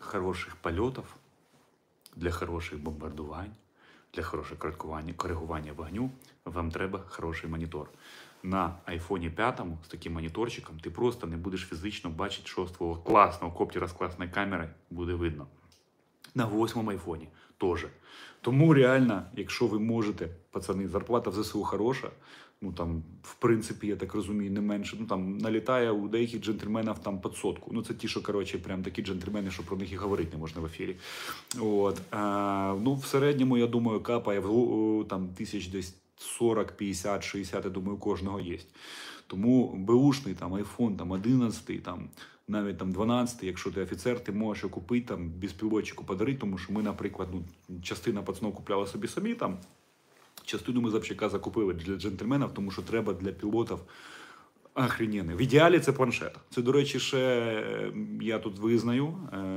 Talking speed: 155 wpm